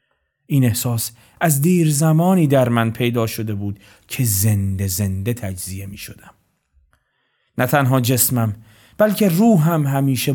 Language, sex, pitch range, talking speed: Persian, male, 115-165 Hz, 130 wpm